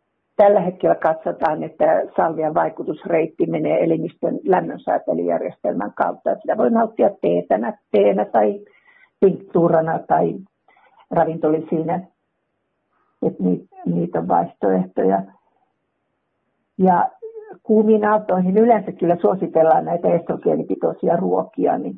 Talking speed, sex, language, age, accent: 85 wpm, female, Finnish, 60-79, native